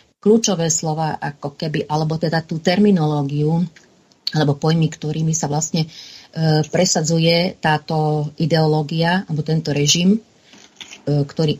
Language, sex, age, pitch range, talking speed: Slovak, female, 40-59, 145-175 Hz, 105 wpm